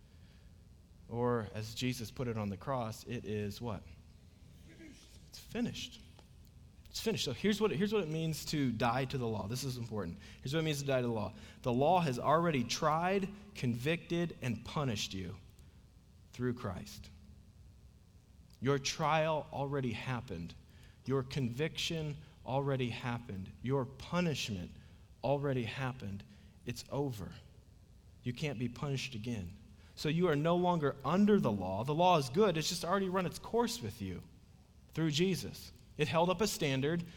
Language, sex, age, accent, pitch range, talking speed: English, male, 40-59, American, 105-155 Hz, 155 wpm